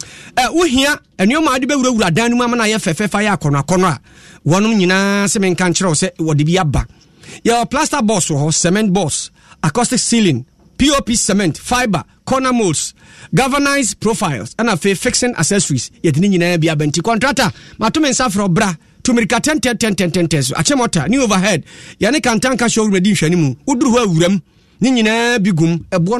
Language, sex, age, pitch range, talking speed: English, male, 40-59, 170-240 Hz, 165 wpm